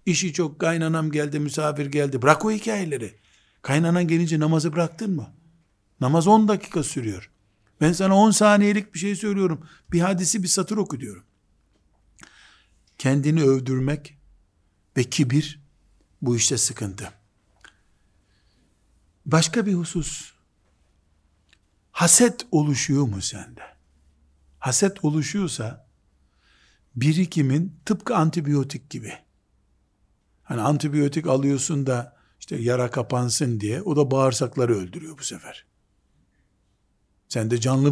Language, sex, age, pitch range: Turkish, male, 60-79, 105-155 Hz